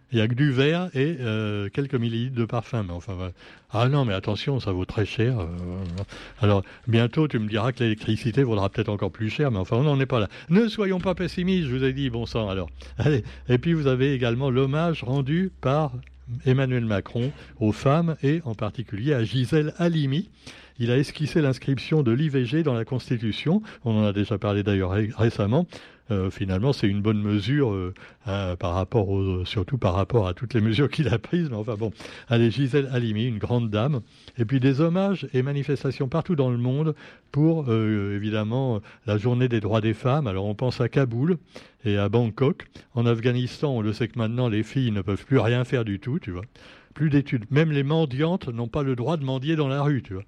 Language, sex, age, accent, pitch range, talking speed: French, male, 60-79, French, 105-140 Hz, 215 wpm